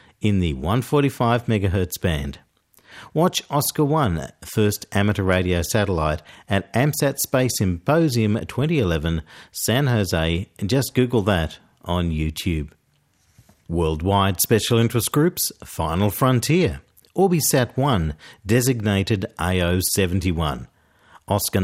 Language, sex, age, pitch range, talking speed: English, male, 50-69, 90-130 Hz, 100 wpm